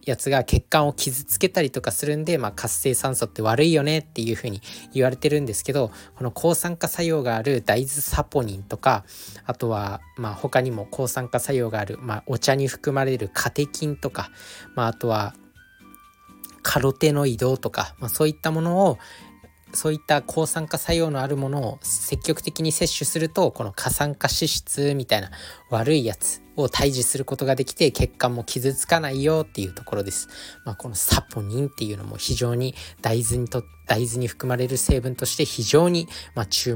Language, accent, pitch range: Japanese, native, 110-150 Hz